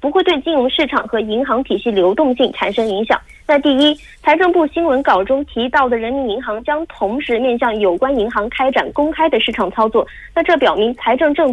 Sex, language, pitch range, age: female, Korean, 230-310 Hz, 20-39